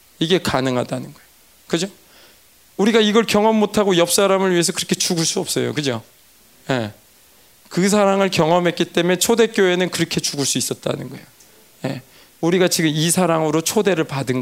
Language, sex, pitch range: Korean, male, 140-195 Hz